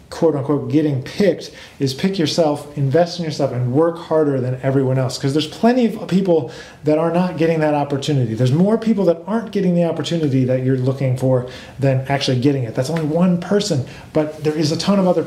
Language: English